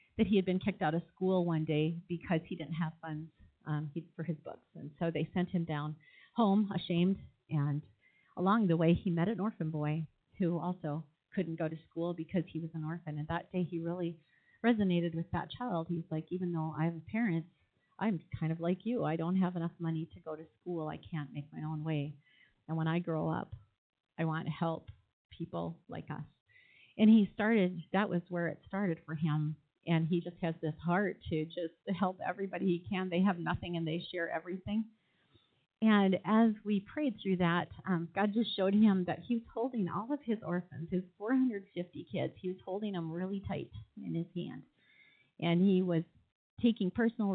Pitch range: 160-190 Hz